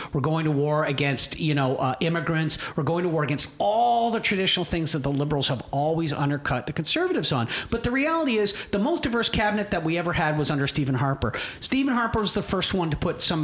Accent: American